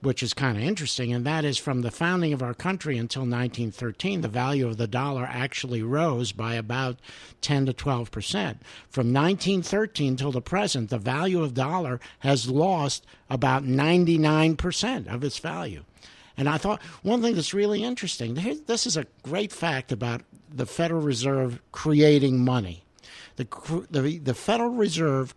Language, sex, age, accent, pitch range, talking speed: English, male, 60-79, American, 125-165 Hz, 165 wpm